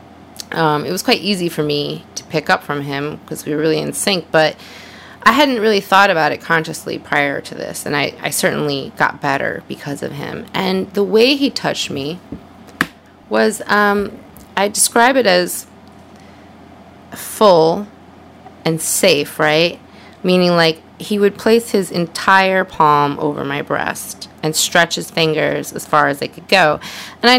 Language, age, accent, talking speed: English, 30-49, American, 170 wpm